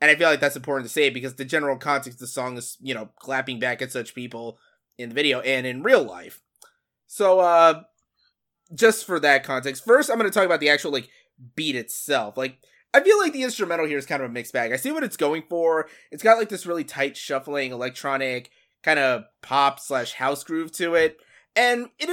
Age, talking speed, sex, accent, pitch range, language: 20-39, 230 wpm, male, American, 130-175 Hz, English